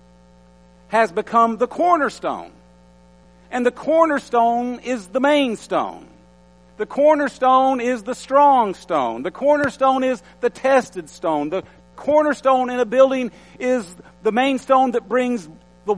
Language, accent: English, American